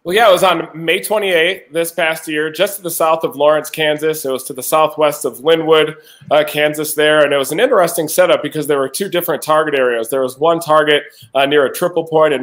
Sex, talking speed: male, 240 wpm